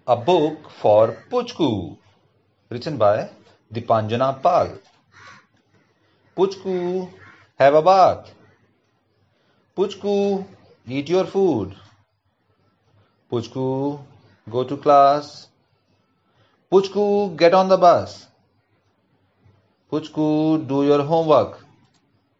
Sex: male